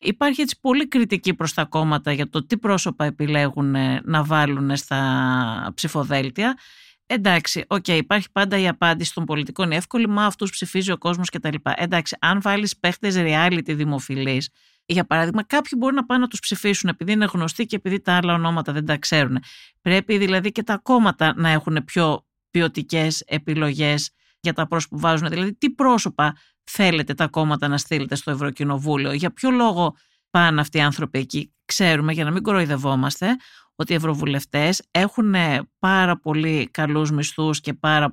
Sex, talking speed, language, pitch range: female, 170 wpm, Greek, 150-210 Hz